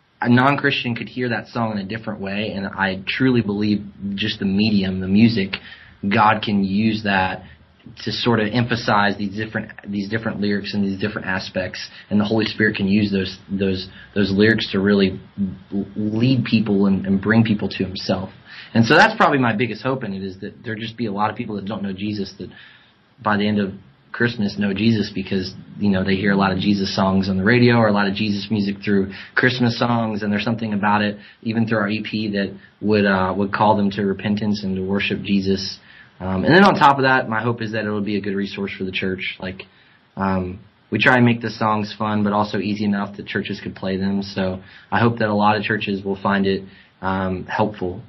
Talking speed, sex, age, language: 225 wpm, male, 20-39, English